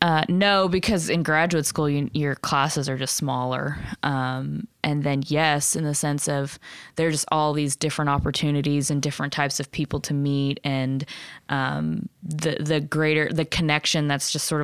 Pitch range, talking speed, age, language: 140-155 Hz, 170 wpm, 20-39, English